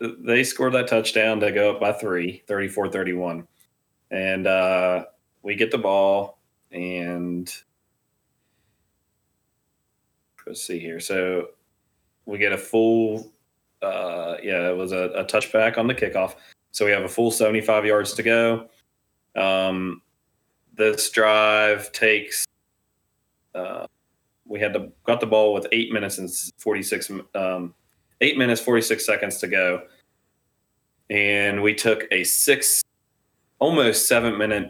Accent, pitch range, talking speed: American, 90-110 Hz, 135 wpm